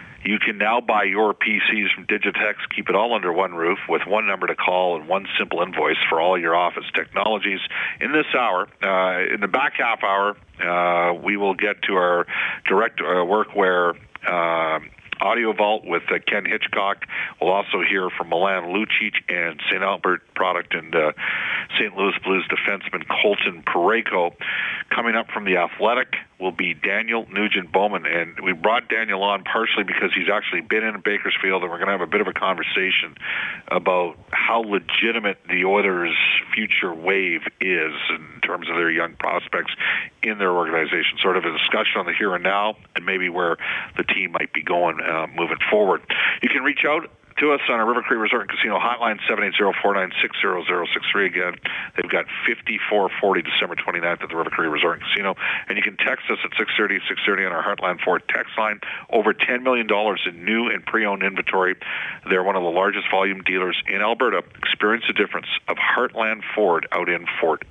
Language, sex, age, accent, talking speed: English, male, 50-69, American, 185 wpm